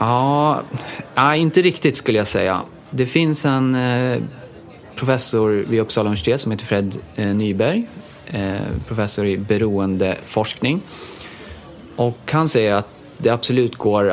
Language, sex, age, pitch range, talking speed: Swedish, male, 30-49, 95-115 Hz, 115 wpm